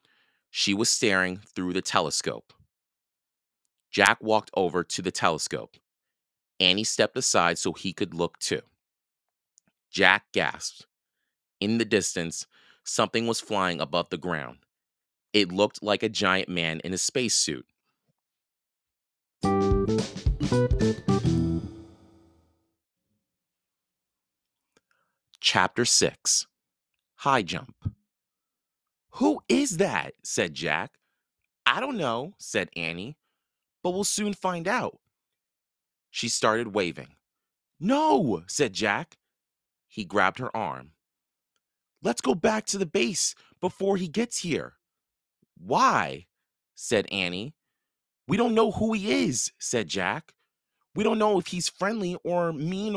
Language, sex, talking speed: English, male, 110 wpm